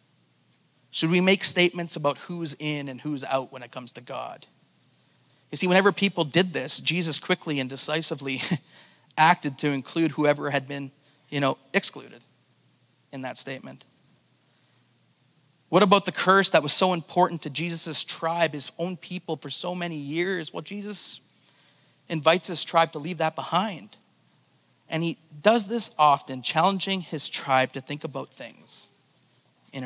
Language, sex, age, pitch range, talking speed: English, male, 30-49, 135-165 Hz, 155 wpm